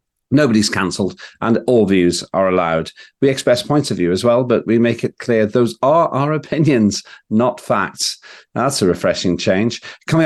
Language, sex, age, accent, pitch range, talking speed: English, male, 50-69, British, 105-135 Hz, 175 wpm